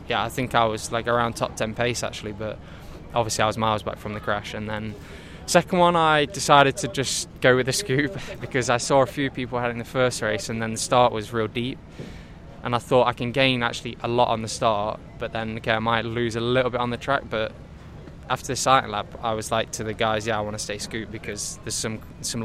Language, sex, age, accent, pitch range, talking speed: English, male, 10-29, British, 110-125 Hz, 250 wpm